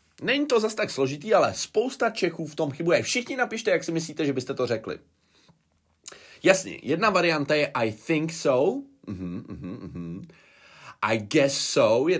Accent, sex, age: native, male, 30-49